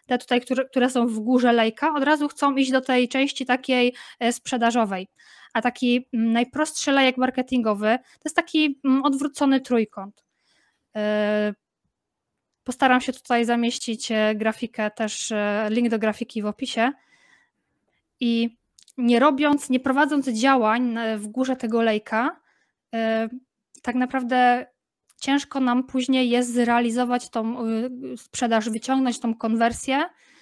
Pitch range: 220-260 Hz